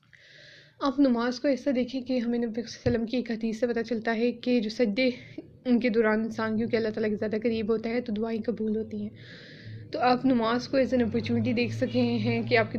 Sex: female